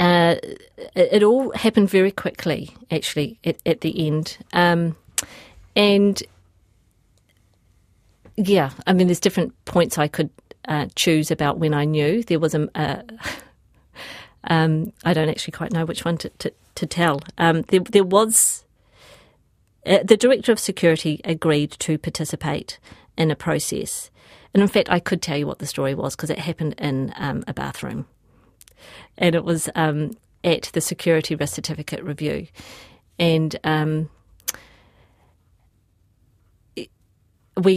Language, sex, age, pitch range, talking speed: English, female, 40-59, 150-180 Hz, 135 wpm